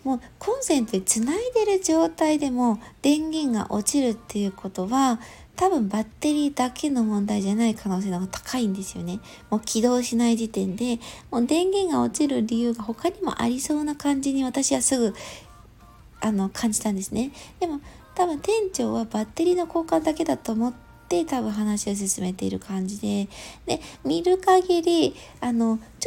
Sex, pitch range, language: female, 215-310 Hz, Japanese